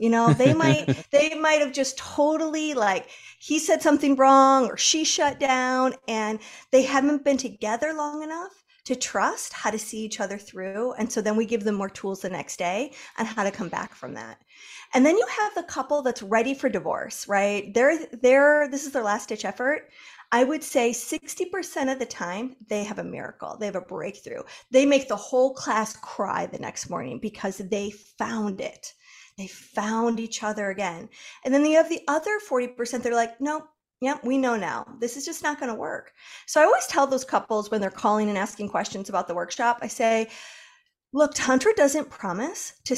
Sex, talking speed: female, 205 wpm